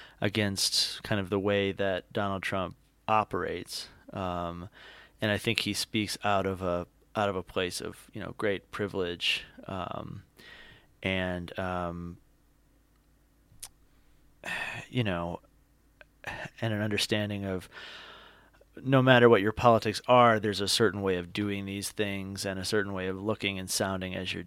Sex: male